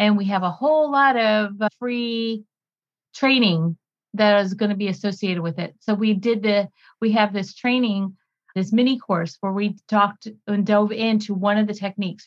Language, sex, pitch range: English, female, 185-225 Hz